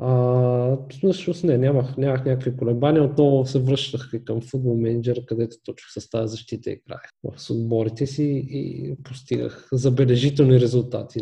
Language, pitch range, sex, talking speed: Bulgarian, 120-145 Hz, male, 140 wpm